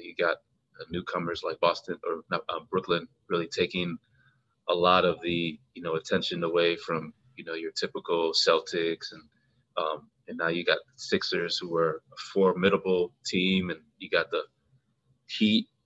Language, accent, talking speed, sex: English, American, 155 wpm, male